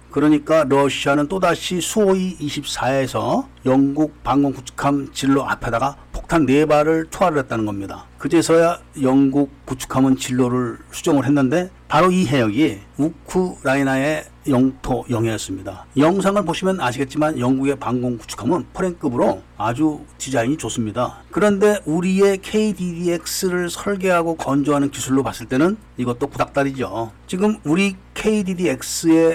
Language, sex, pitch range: Korean, male, 125-170 Hz